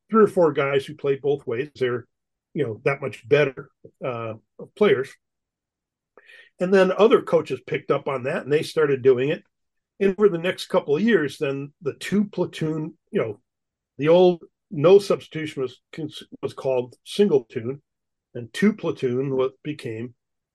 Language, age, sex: English, 50-69, male